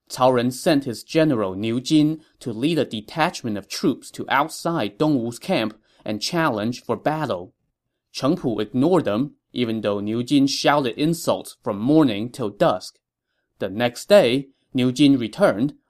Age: 30-49